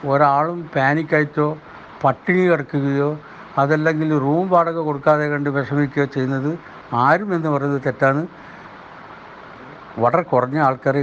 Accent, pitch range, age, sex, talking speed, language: native, 140-170 Hz, 60-79, male, 90 wpm, Malayalam